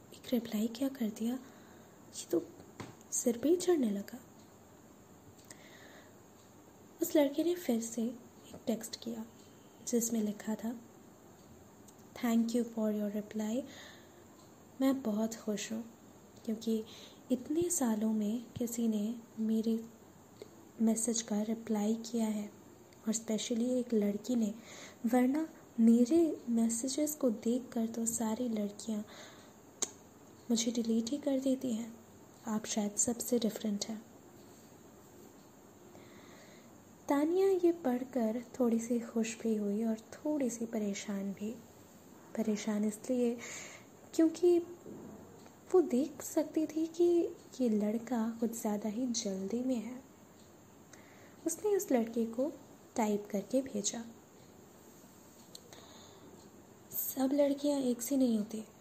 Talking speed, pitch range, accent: 110 wpm, 220-260 Hz, native